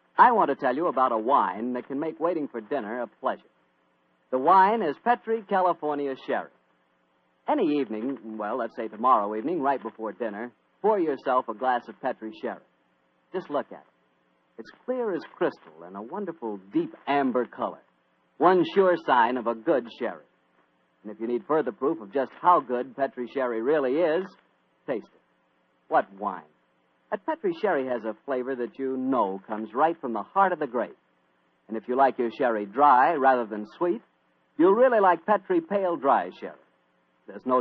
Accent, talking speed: American, 180 wpm